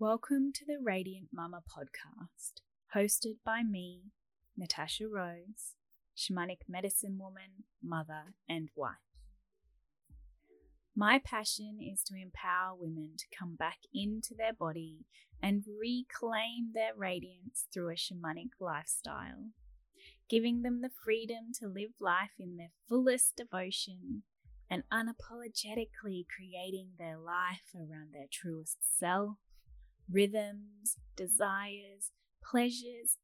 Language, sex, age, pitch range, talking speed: English, female, 10-29, 170-220 Hz, 110 wpm